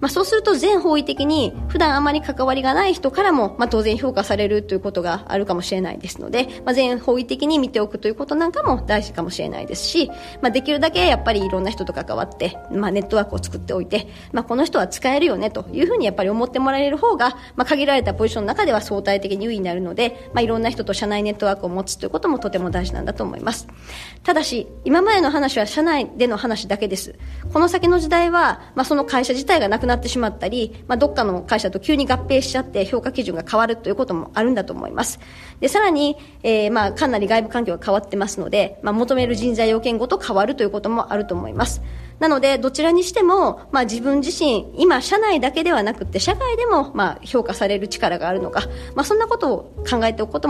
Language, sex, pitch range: Japanese, male, 205-290 Hz